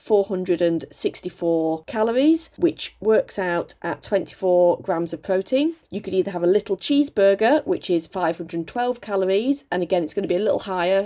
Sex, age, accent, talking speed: female, 40-59, British, 165 wpm